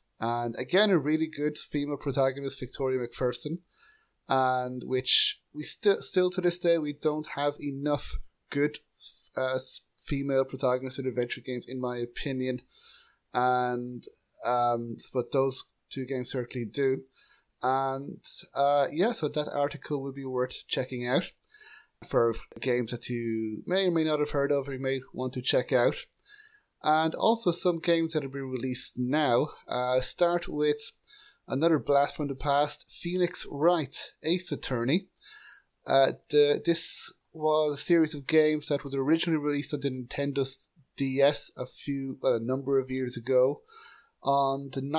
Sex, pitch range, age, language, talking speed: male, 130-160 Hz, 30-49, English, 155 wpm